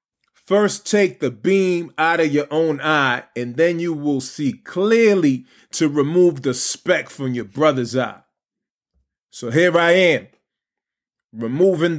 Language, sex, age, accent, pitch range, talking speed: English, male, 30-49, American, 150-185 Hz, 140 wpm